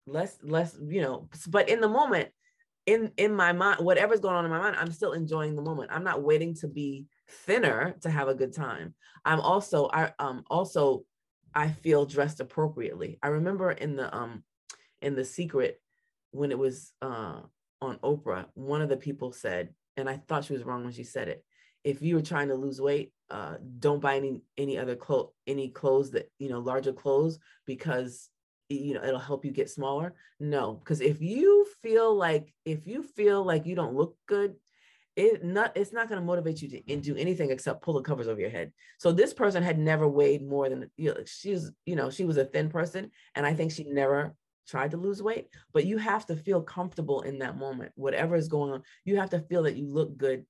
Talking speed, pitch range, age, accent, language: 215 wpm, 135-175 Hz, 20-39, American, English